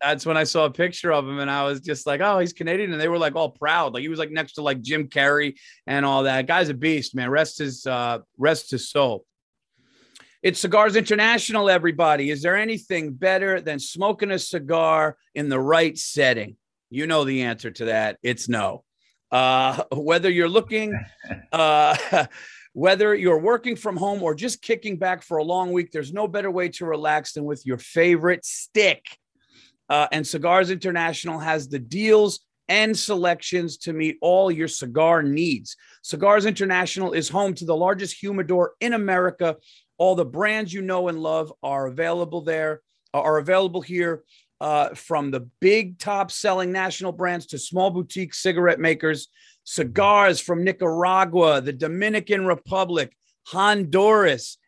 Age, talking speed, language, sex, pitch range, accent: 40-59, 170 wpm, English, male, 150-190 Hz, American